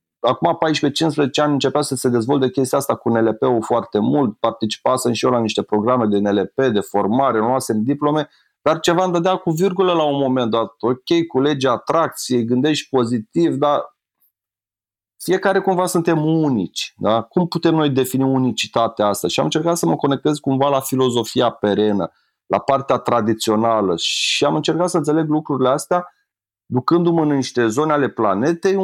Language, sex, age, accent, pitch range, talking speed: Romanian, male, 30-49, native, 125-175 Hz, 160 wpm